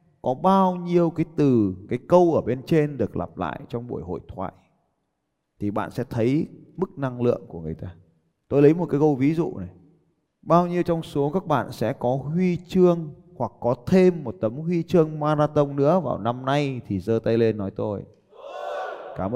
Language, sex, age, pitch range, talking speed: Vietnamese, male, 20-39, 110-155 Hz, 200 wpm